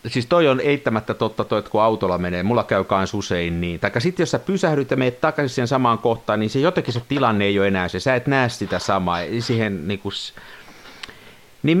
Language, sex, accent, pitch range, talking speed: Finnish, male, native, 95-140 Hz, 210 wpm